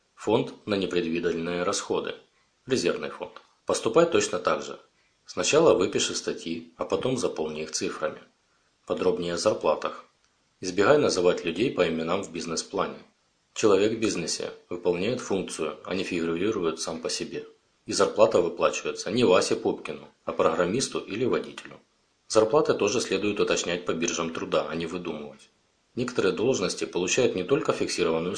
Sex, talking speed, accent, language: male, 135 wpm, native, Russian